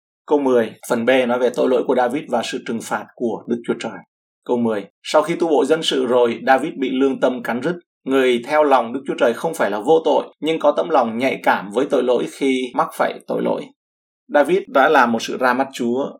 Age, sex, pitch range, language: 20-39, male, 120-145 Hz, Vietnamese